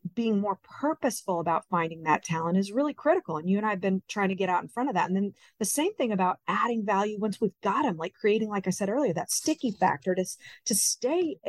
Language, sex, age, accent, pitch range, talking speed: English, female, 40-59, American, 180-230 Hz, 250 wpm